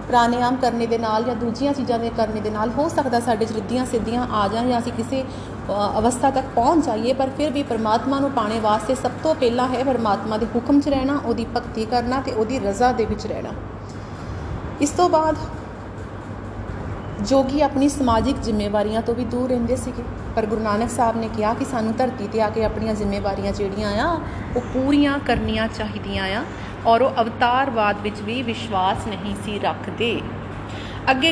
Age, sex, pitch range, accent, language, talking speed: 30-49, female, 215-275 Hz, native, Hindi, 150 wpm